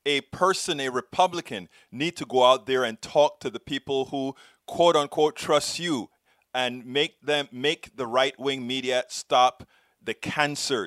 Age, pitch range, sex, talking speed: 30-49, 125-165 Hz, male, 160 wpm